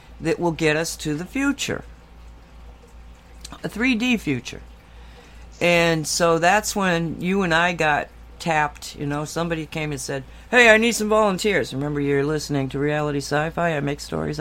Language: English